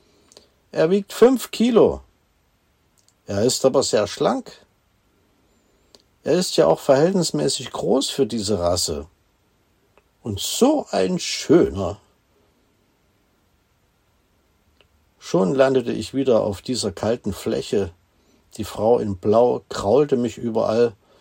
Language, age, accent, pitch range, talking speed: German, 60-79, German, 95-150 Hz, 105 wpm